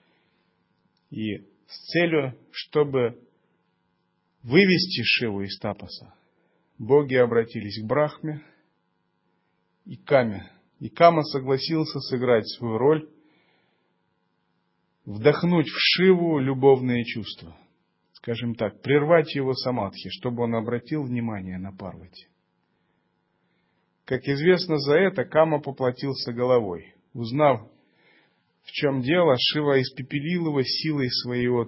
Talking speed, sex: 100 wpm, male